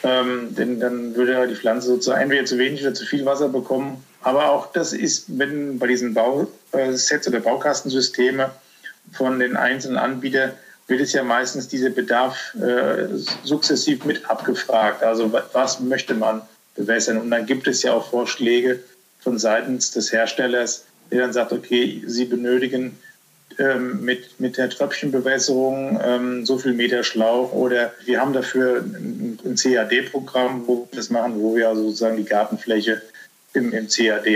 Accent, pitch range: German, 115-130 Hz